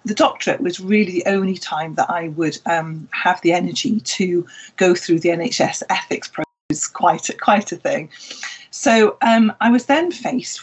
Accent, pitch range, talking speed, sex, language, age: British, 170-220 Hz, 180 wpm, female, English, 40-59